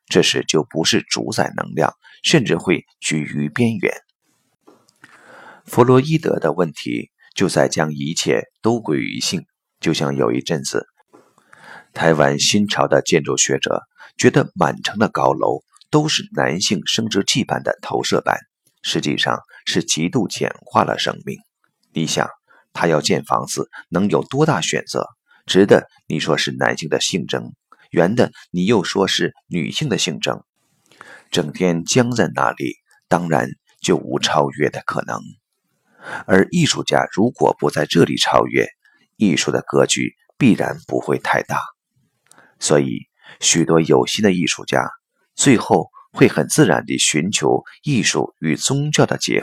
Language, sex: Chinese, male